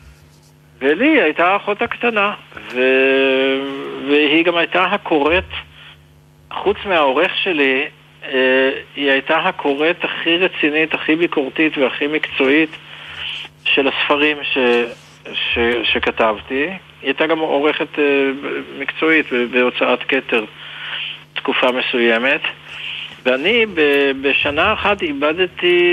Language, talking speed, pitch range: Hebrew, 95 wpm, 125-155 Hz